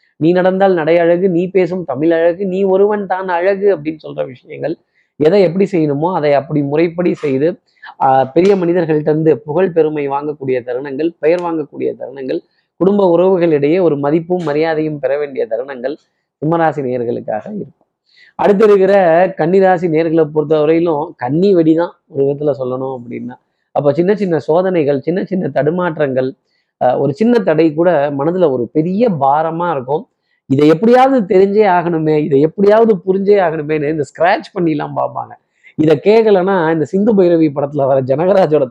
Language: Tamil